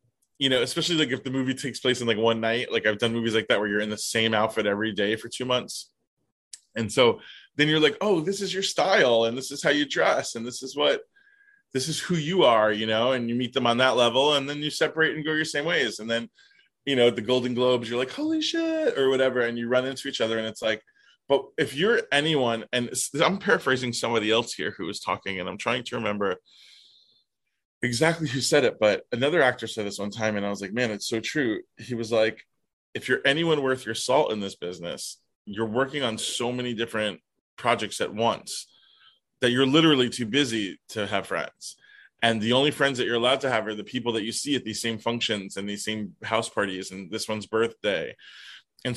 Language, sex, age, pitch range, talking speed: English, male, 20-39, 110-140 Hz, 235 wpm